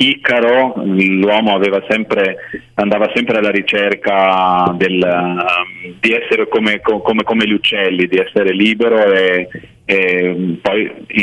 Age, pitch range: 30-49, 90-105 Hz